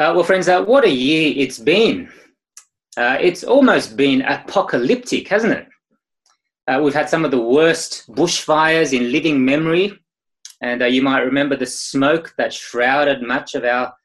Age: 20-39